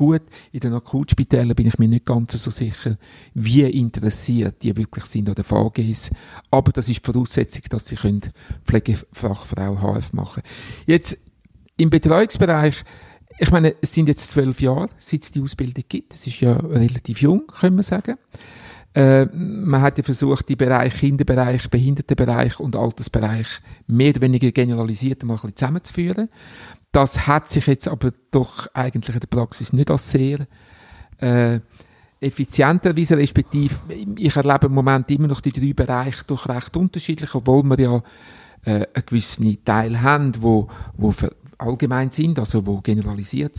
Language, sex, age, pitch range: German, male, 50-69, 120-150 Hz